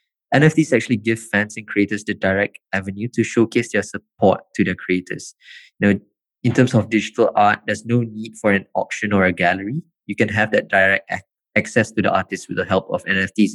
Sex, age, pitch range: male, 20-39, 100-125 Hz